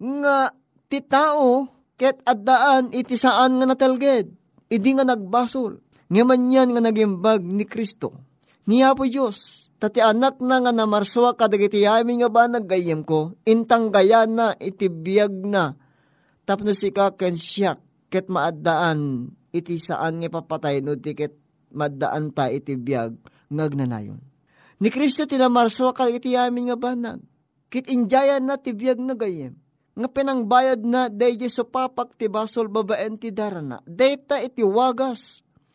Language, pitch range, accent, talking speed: Filipino, 180-250 Hz, native, 125 wpm